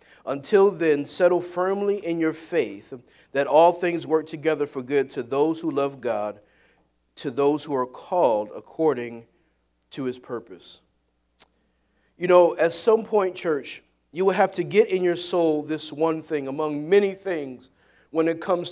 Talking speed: 165 wpm